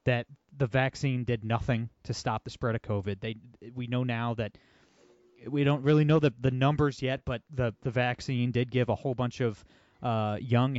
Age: 30-49